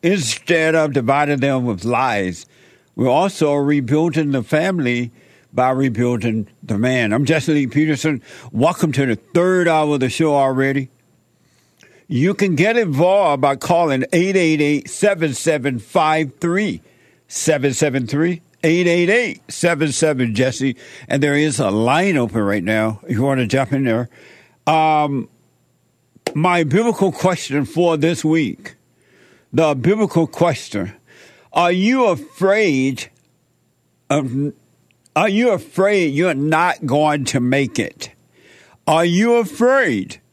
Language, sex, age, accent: English, male, 60-79, American